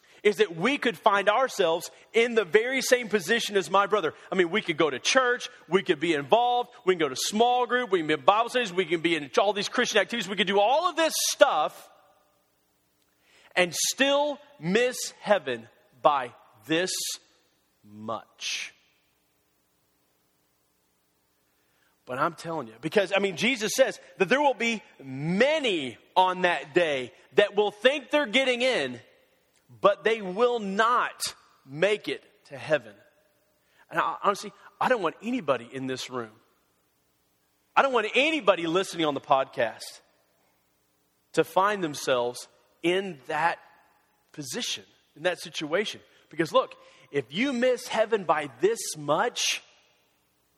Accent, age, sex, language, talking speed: American, 40-59, male, English, 150 wpm